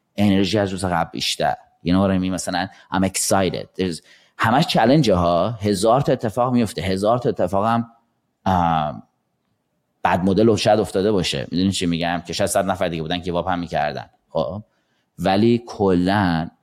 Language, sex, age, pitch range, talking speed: Persian, male, 30-49, 85-105 Hz, 145 wpm